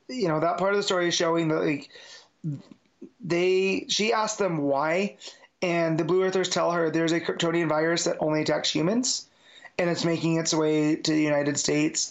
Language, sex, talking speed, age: English, male, 195 wpm, 30-49